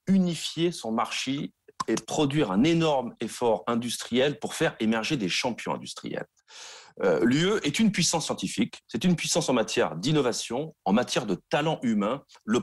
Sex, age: male, 40-59